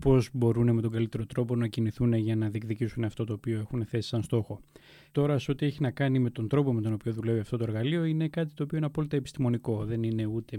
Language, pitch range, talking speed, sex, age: Greek, 115-135 Hz, 250 wpm, male, 20-39